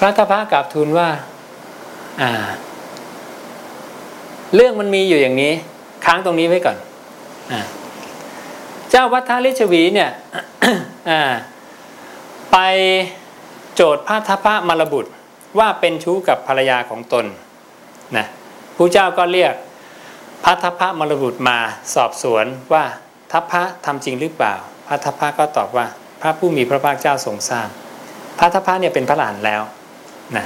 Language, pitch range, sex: English, 140-185 Hz, male